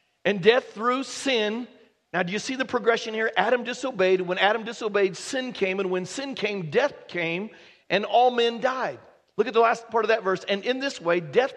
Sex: male